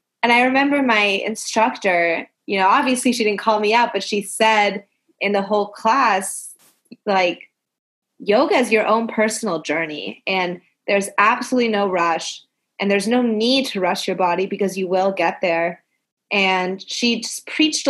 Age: 20-39